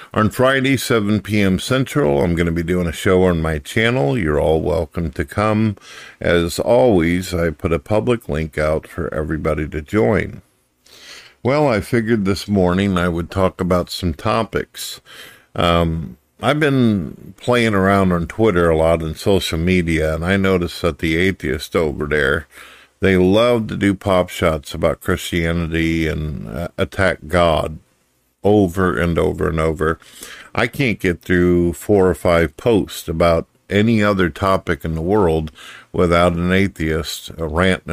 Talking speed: 155 wpm